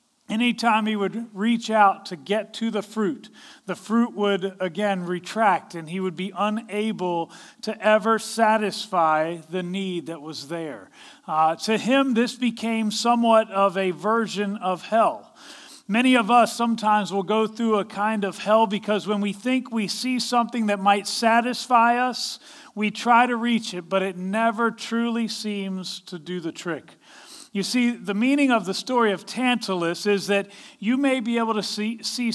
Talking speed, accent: 175 wpm, American